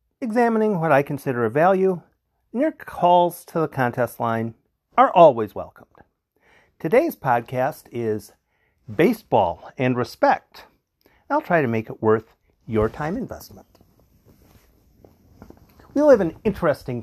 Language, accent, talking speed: English, American, 125 wpm